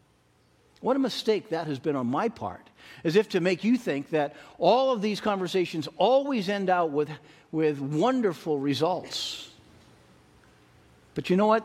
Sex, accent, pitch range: male, American, 125-180 Hz